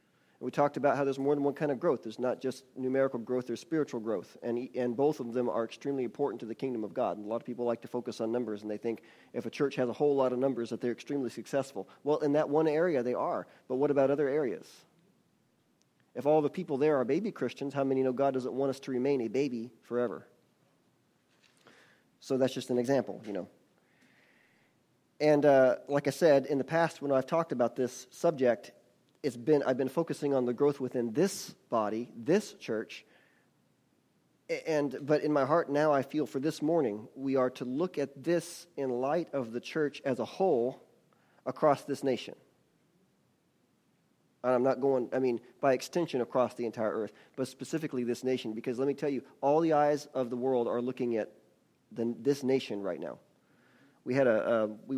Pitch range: 125-145 Hz